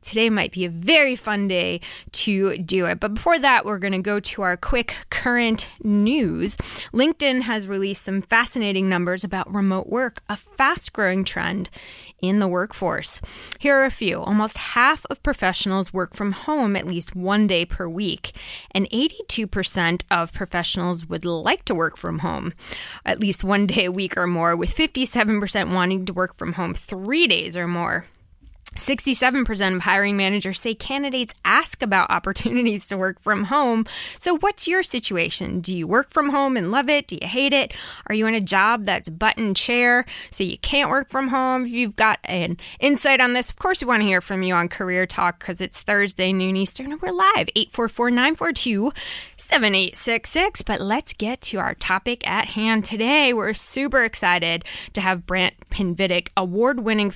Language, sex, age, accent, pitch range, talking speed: English, female, 20-39, American, 190-255 Hz, 180 wpm